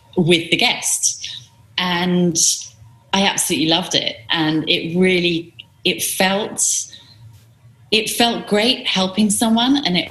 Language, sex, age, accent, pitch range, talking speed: English, female, 30-49, British, 140-165 Hz, 120 wpm